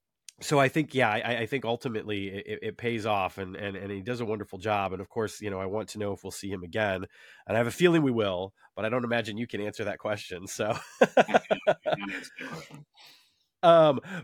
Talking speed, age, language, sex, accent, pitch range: 220 wpm, 30-49, English, male, American, 90-110 Hz